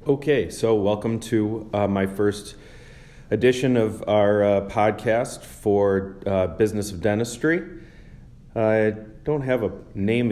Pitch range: 90-110 Hz